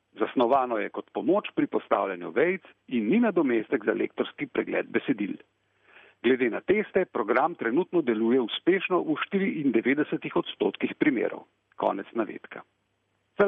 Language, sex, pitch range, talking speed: Italian, male, 145-220 Hz, 125 wpm